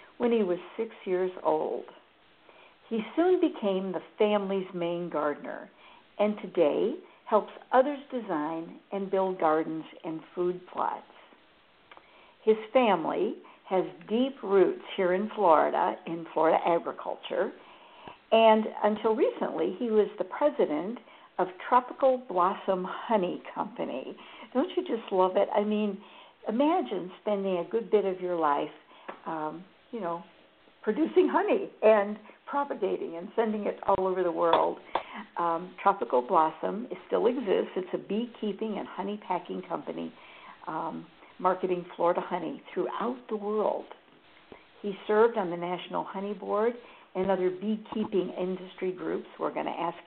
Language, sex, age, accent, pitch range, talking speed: English, female, 60-79, American, 180-225 Hz, 135 wpm